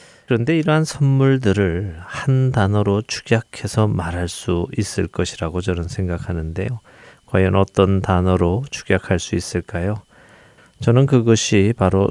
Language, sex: Korean, male